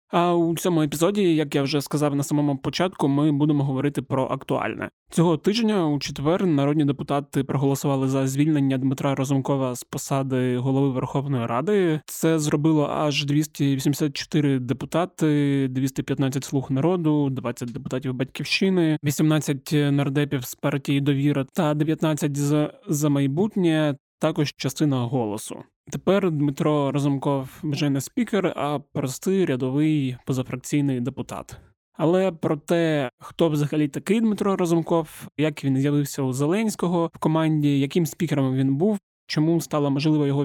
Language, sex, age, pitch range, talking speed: Ukrainian, male, 20-39, 140-160 Hz, 135 wpm